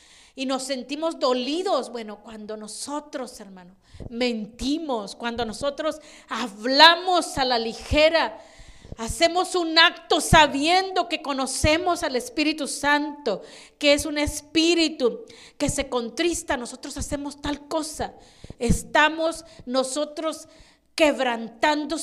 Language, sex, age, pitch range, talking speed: Spanish, female, 40-59, 250-320 Hz, 105 wpm